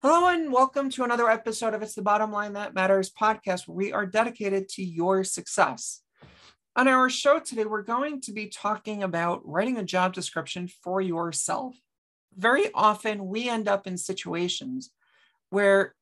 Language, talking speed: English, 165 wpm